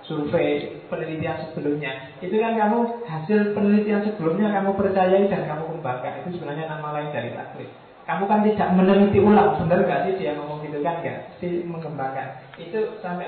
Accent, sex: native, male